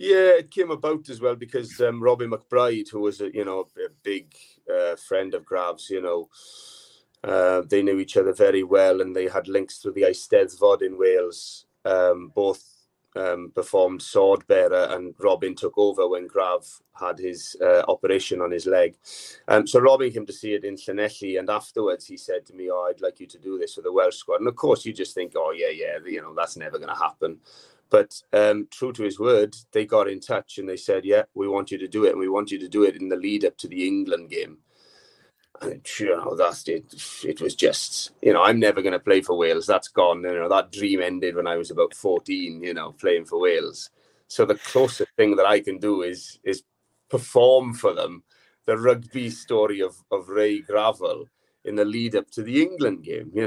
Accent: British